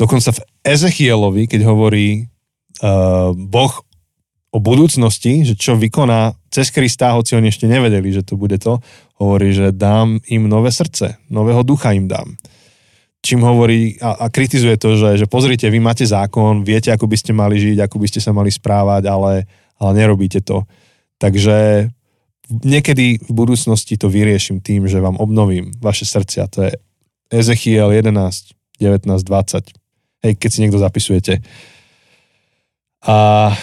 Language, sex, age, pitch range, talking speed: Slovak, male, 20-39, 105-125 Hz, 150 wpm